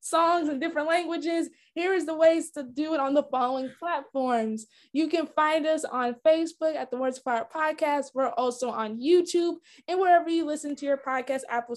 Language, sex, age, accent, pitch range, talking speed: English, female, 20-39, American, 255-325 Hz, 200 wpm